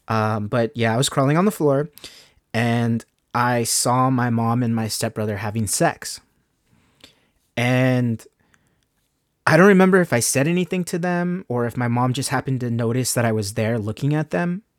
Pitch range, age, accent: 110-135 Hz, 30-49, American